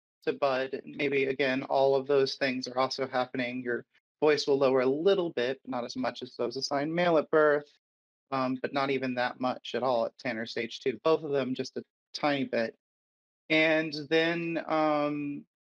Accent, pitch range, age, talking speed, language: American, 130-150 Hz, 30-49, 185 wpm, English